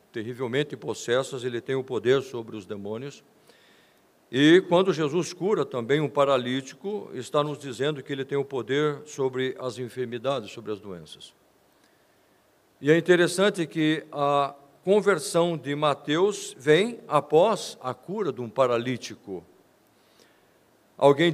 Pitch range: 130-165 Hz